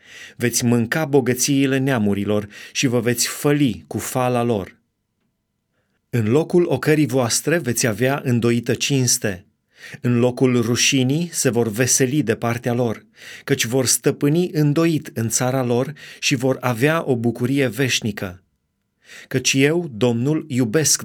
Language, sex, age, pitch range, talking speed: Romanian, male, 30-49, 120-145 Hz, 130 wpm